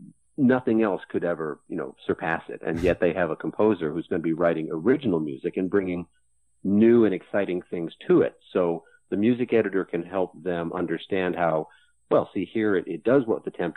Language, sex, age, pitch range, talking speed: English, male, 50-69, 85-110 Hz, 205 wpm